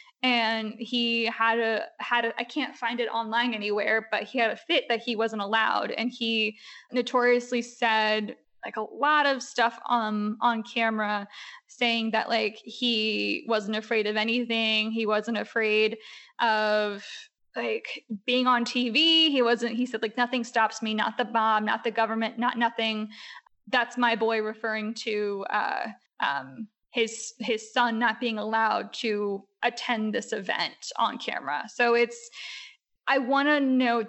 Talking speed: 160 wpm